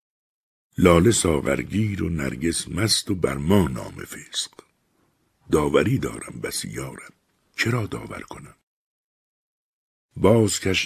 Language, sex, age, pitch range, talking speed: Persian, male, 60-79, 70-105 Hz, 90 wpm